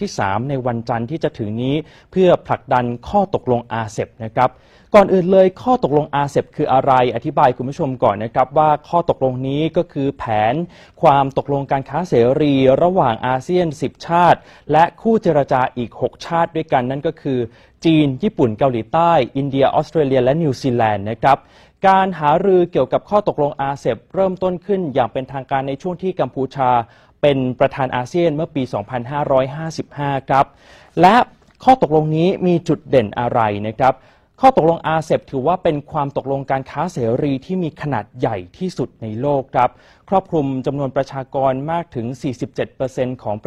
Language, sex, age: Thai, male, 20-39